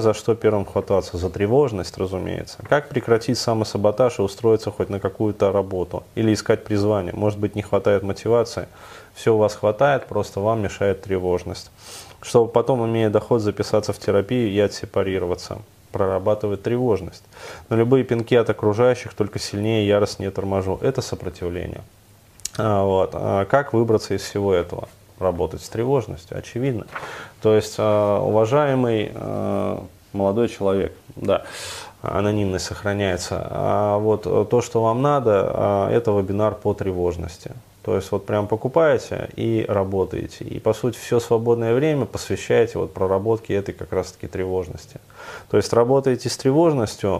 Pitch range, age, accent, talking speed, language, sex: 100-115 Hz, 20-39, native, 140 wpm, Russian, male